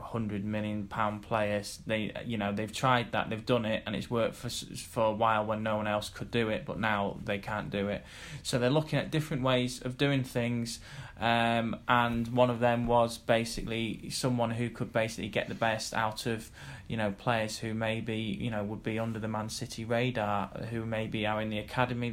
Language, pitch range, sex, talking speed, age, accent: English, 110-125 Hz, male, 210 wpm, 10-29, British